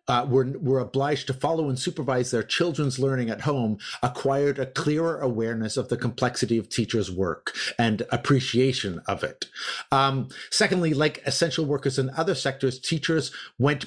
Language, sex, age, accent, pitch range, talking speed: English, male, 50-69, American, 120-145 Hz, 160 wpm